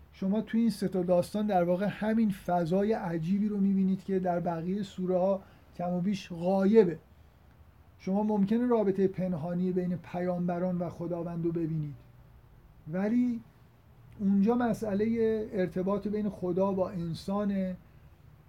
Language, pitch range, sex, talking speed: Persian, 170-195 Hz, male, 125 wpm